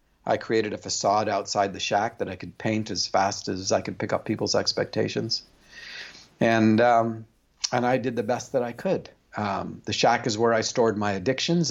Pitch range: 100-120 Hz